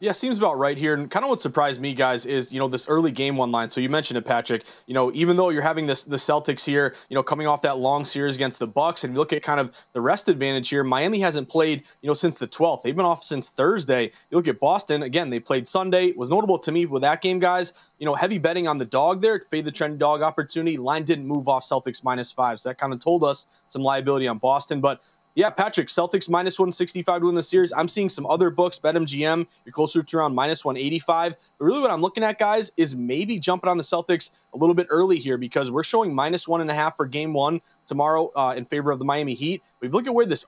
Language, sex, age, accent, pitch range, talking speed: English, male, 30-49, American, 140-180 Hz, 265 wpm